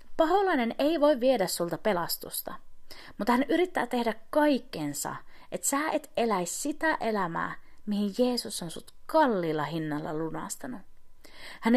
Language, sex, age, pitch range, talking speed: Finnish, female, 30-49, 170-285 Hz, 125 wpm